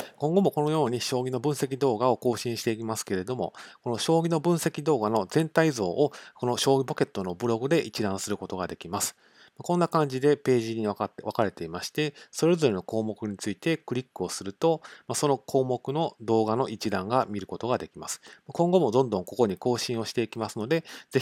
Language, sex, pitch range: Japanese, male, 95-130 Hz